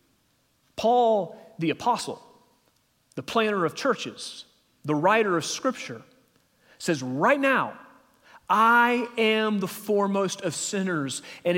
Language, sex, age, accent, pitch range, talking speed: English, male, 30-49, American, 155-215 Hz, 110 wpm